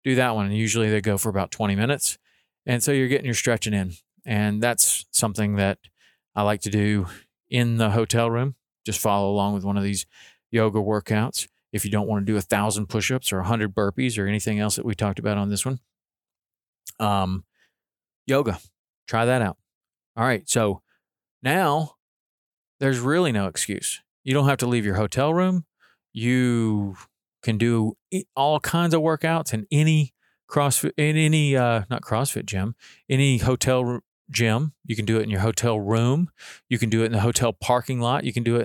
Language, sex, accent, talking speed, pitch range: English, male, American, 195 wpm, 105-130 Hz